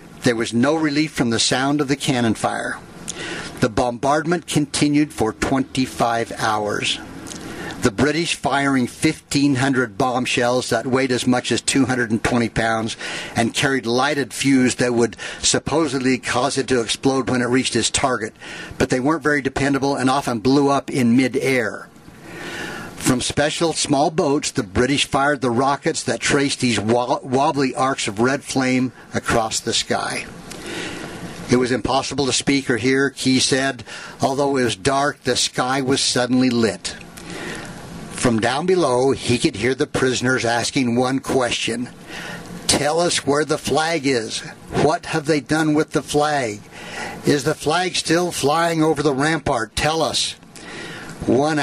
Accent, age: American, 60-79